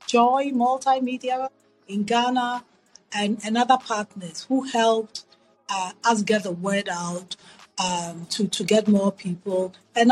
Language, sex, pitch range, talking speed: English, female, 205-260 Hz, 135 wpm